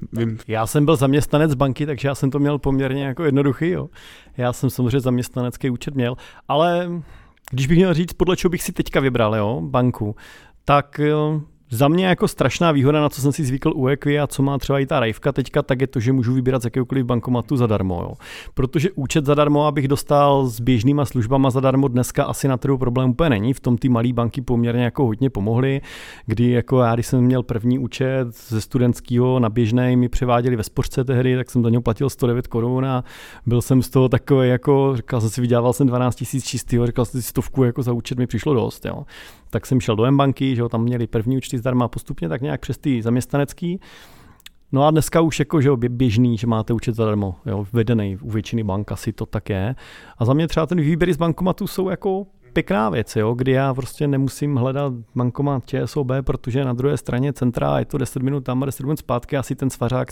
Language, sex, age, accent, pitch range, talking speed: Czech, male, 40-59, native, 120-145 Hz, 210 wpm